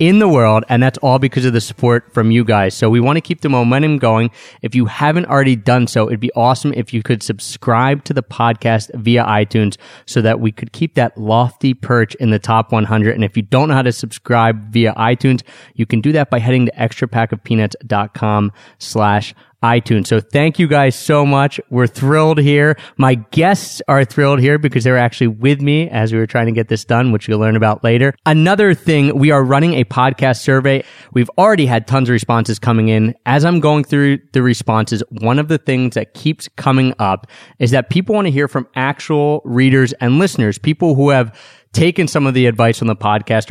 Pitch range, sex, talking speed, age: 115-140 Hz, male, 215 wpm, 30-49